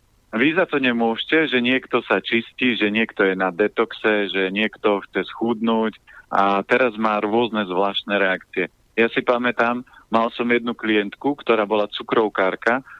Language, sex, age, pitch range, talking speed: Slovak, male, 40-59, 100-120 Hz, 150 wpm